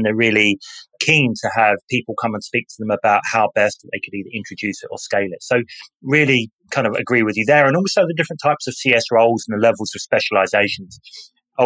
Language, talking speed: English, 230 wpm